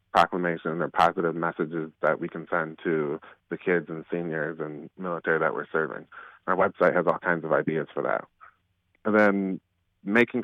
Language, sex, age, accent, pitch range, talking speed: English, male, 30-49, American, 85-100 Hz, 170 wpm